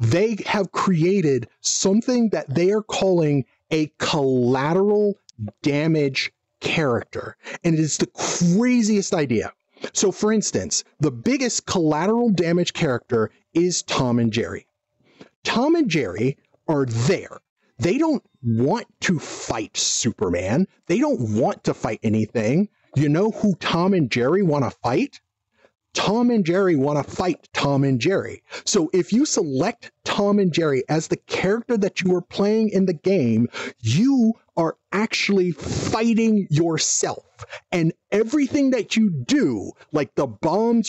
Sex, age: male, 40-59